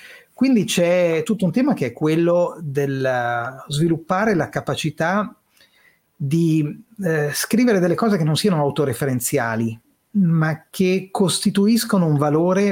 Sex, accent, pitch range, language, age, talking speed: male, native, 140-190 Hz, Italian, 30-49, 125 wpm